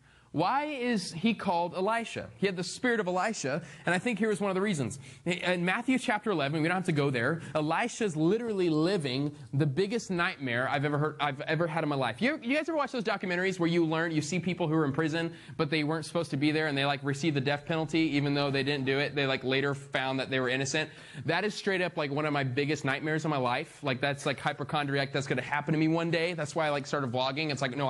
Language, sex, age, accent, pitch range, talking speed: English, male, 20-39, American, 140-185 Hz, 265 wpm